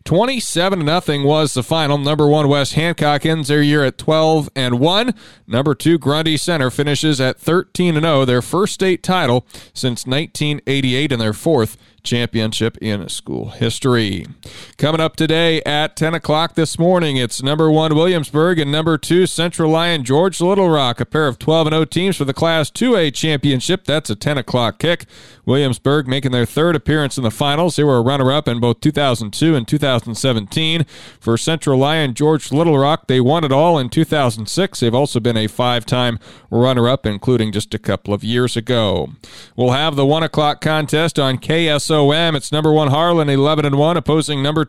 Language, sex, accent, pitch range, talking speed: English, male, American, 125-160 Hz, 175 wpm